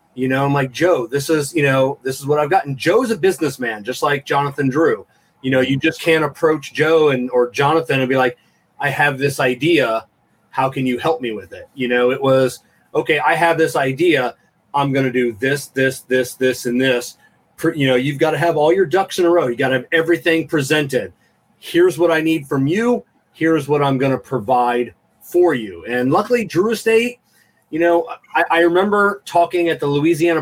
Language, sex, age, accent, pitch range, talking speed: English, male, 30-49, American, 125-160 Hz, 215 wpm